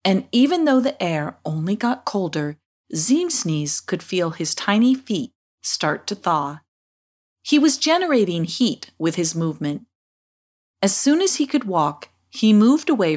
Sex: female